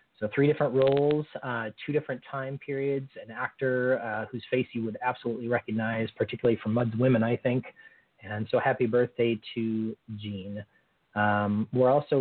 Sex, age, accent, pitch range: male, 30-49, American, 115-140 Hz